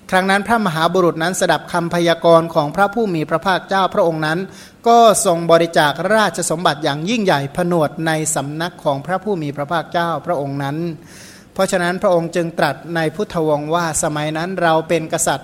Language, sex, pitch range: Thai, male, 160-190 Hz